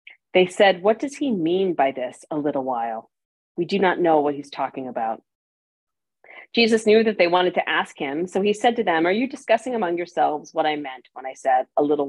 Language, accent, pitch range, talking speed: English, American, 140-180 Hz, 225 wpm